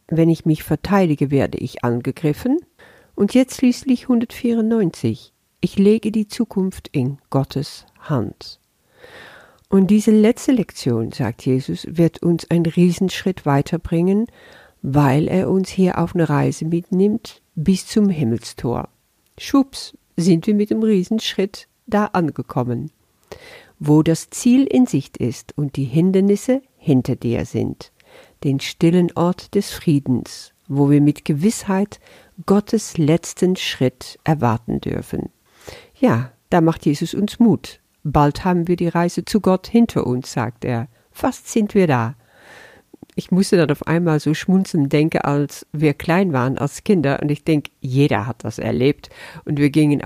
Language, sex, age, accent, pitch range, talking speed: German, female, 50-69, German, 140-190 Hz, 145 wpm